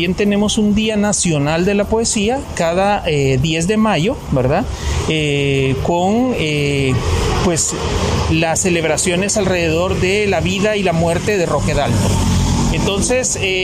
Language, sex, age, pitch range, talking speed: Spanish, male, 40-59, 155-210 Hz, 140 wpm